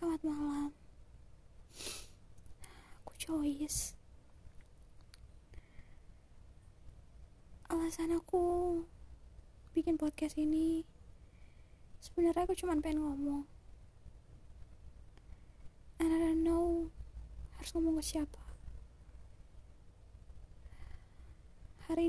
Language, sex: Indonesian, female